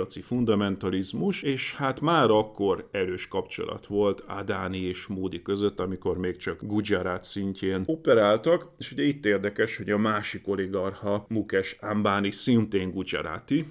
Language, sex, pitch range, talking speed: Hungarian, male, 95-115 Hz, 130 wpm